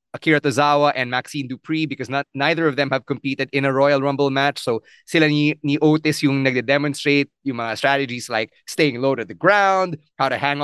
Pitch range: 135-155 Hz